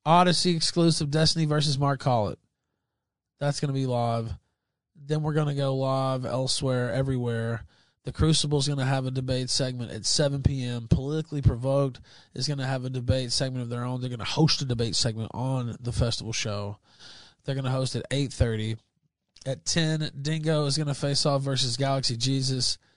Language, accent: English, American